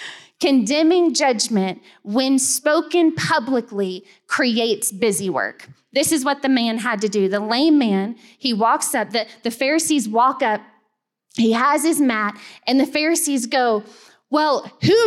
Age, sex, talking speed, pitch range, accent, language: 20-39, female, 145 wpm, 245-300 Hz, American, English